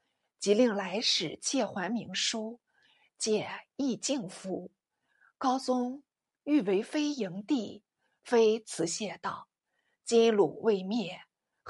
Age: 50-69